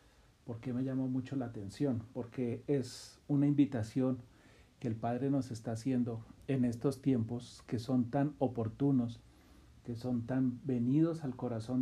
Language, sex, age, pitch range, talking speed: Spanish, male, 40-59, 115-135 Hz, 145 wpm